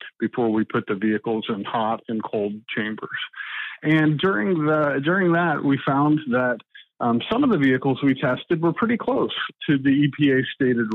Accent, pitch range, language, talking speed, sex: American, 120-155 Hz, English, 175 wpm, male